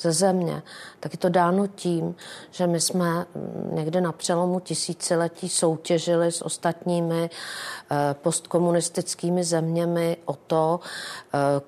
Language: Czech